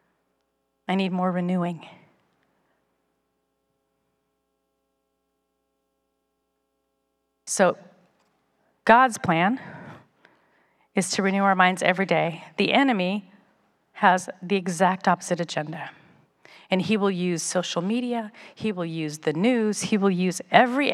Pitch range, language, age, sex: 175-235 Hz, English, 40-59, female